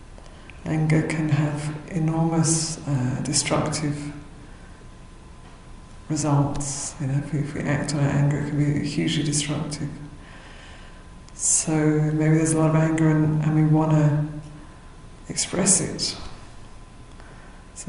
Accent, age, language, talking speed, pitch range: British, 50-69, English, 115 wpm, 145-155 Hz